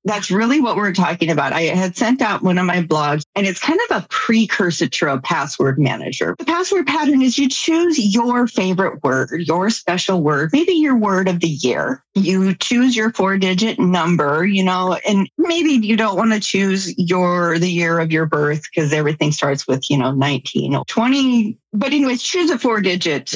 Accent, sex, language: American, female, English